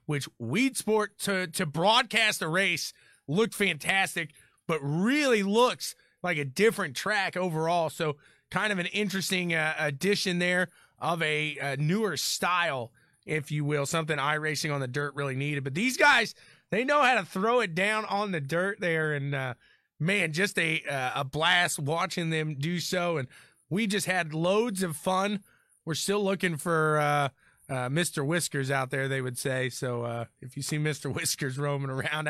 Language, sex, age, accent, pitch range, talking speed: English, male, 30-49, American, 150-215 Hz, 180 wpm